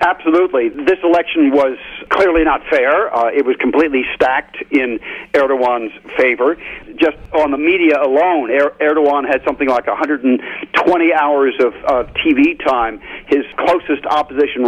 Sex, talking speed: male, 140 wpm